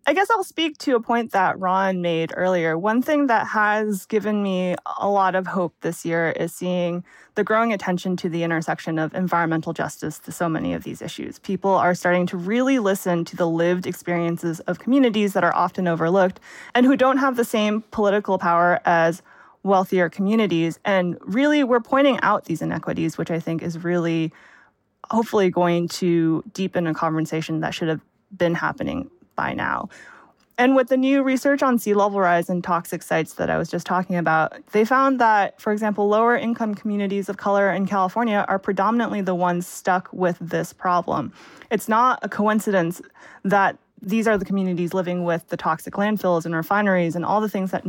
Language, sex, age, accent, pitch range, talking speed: English, female, 20-39, American, 175-215 Hz, 190 wpm